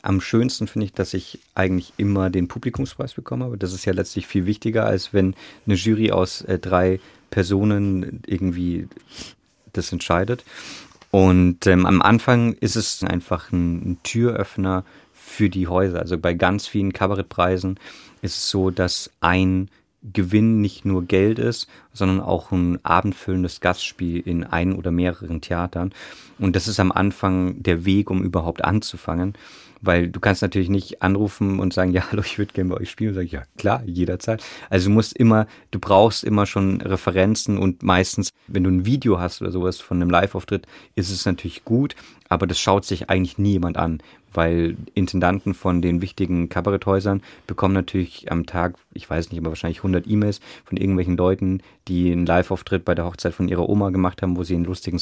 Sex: male